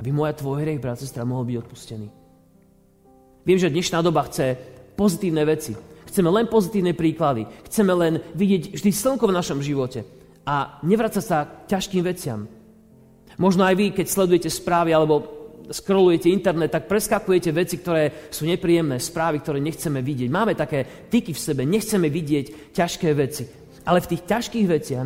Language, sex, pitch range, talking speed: Slovak, male, 130-180 Hz, 160 wpm